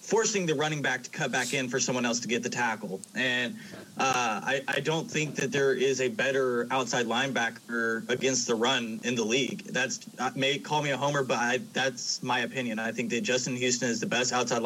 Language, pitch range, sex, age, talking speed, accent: English, 125-155 Hz, male, 20-39, 225 wpm, American